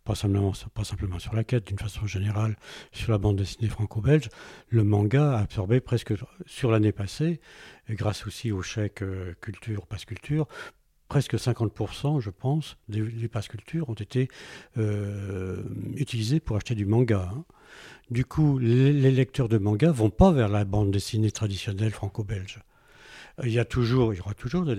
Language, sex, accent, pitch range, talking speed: French, male, French, 105-130 Hz, 170 wpm